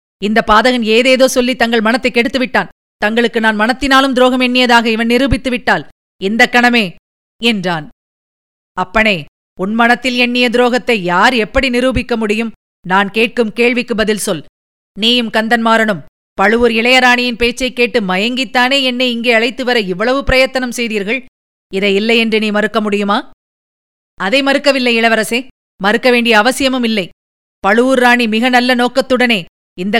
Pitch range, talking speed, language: 215-250 Hz, 130 wpm, Tamil